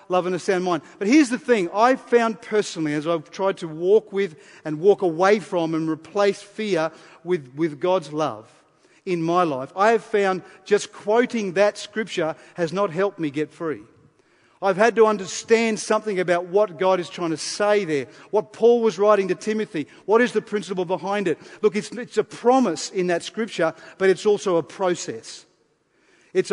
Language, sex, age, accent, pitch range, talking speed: English, male, 40-59, Australian, 165-215 Hz, 190 wpm